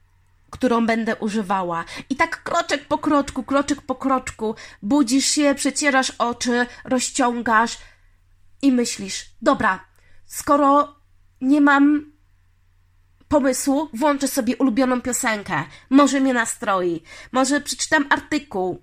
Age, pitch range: 20-39, 195-280 Hz